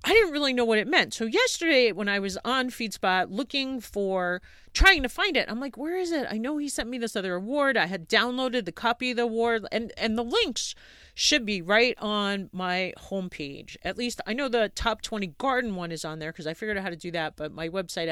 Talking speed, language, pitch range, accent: 245 wpm, English, 195-275 Hz, American